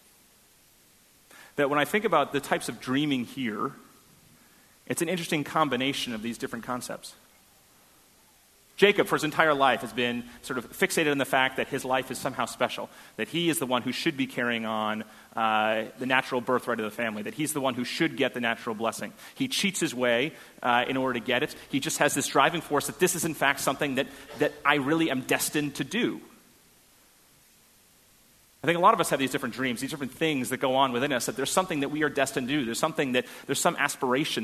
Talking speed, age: 220 wpm, 30-49